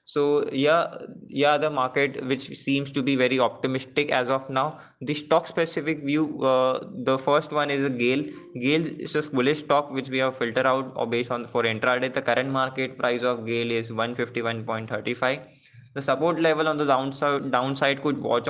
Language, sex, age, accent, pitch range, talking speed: English, male, 20-39, Indian, 120-140 Hz, 190 wpm